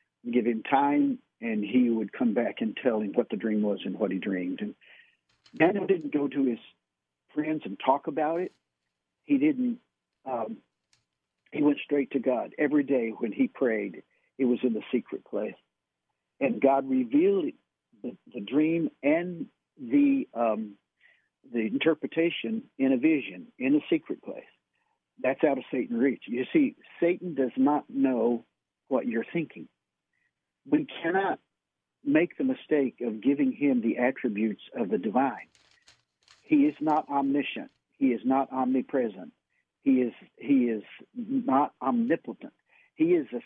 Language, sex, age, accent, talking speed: English, male, 60-79, American, 155 wpm